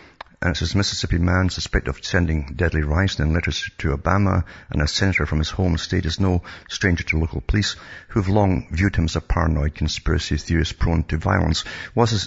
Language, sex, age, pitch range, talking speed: English, male, 60-79, 80-95 Hz, 200 wpm